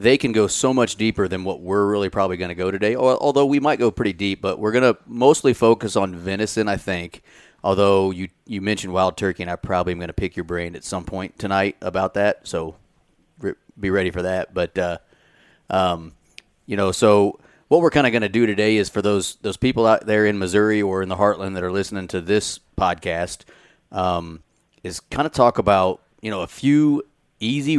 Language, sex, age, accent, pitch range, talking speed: English, male, 30-49, American, 90-105 Hz, 220 wpm